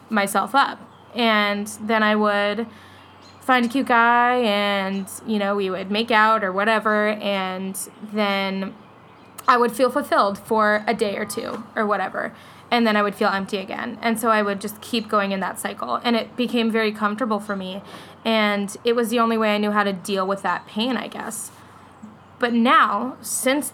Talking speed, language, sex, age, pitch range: 190 wpm, English, female, 20-39, 200-235 Hz